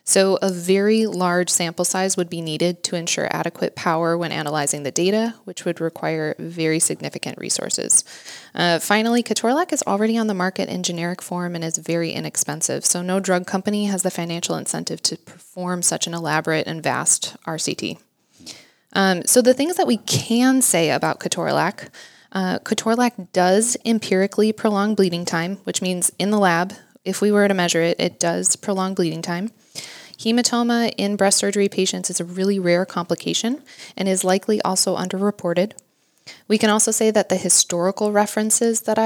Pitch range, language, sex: 175-210 Hz, English, female